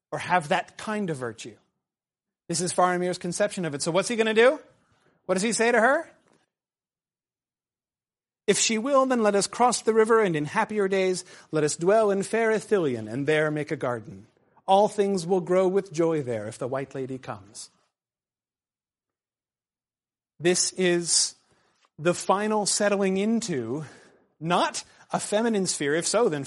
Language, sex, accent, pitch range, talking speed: English, male, American, 155-205 Hz, 165 wpm